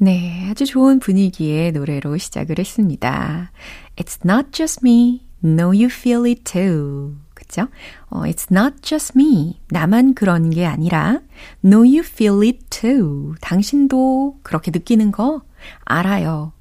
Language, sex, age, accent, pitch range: Korean, female, 30-49, native, 160-240 Hz